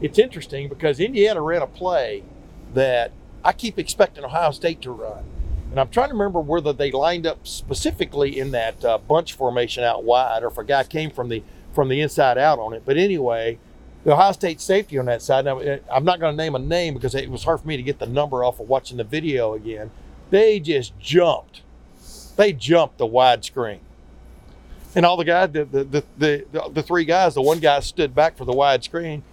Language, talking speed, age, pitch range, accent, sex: English, 205 wpm, 50-69, 125-160 Hz, American, male